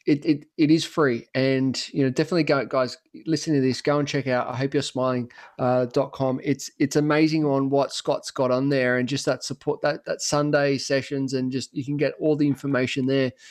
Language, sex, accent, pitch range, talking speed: English, male, Australian, 140-185 Hz, 220 wpm